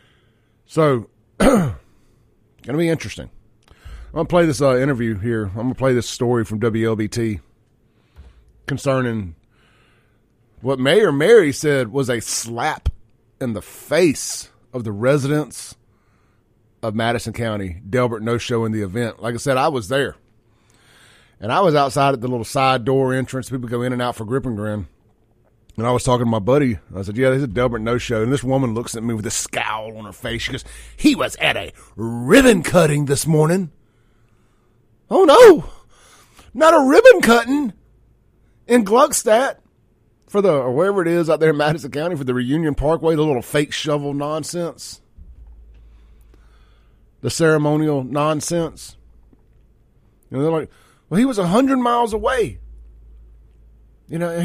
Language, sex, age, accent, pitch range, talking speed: English, male, 30-49, American, 110-145 Hz, 160 wpm